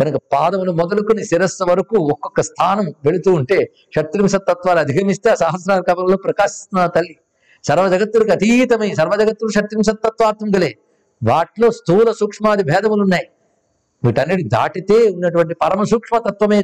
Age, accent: 50-69, native